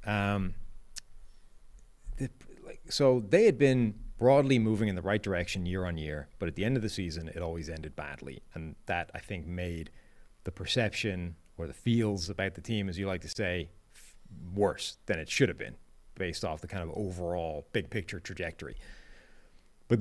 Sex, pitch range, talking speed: male, 95-120 Hz, 175 wpm